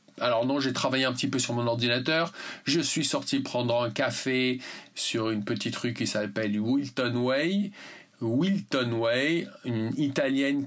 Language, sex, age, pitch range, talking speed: English, male, 40-59, 120-160 Hz, 155 wpm